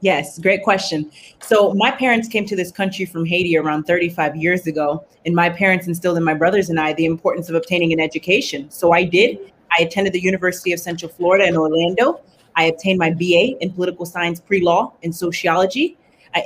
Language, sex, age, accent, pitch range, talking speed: English, female, 30-49, American, 165-195 Hz, 195 wpm